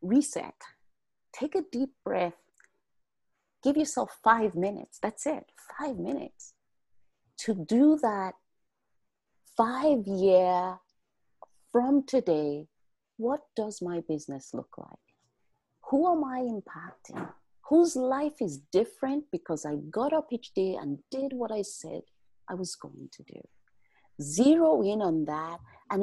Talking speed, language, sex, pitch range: 125 wpm, English, female, 175-250 Hz